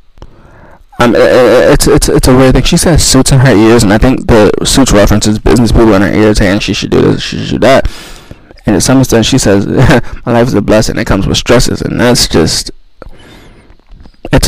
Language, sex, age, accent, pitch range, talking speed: English, male, 20-39, American, 100-130 Hz, 220 wpm